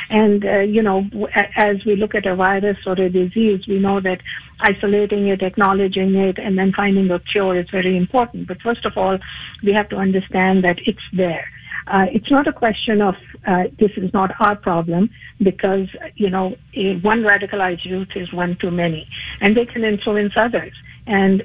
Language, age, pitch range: English, 50-69, 180-210 Hz